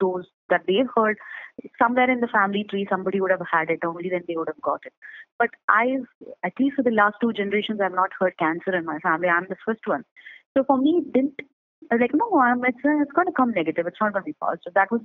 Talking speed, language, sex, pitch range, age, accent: 265 wpm, English, female, 175-225 Hz, 20-39, Indian